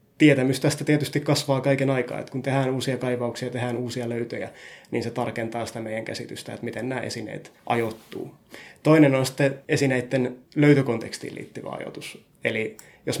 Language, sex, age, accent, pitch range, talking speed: Finnish, male, 20-39, native, 120-135 Hz, 155 wpm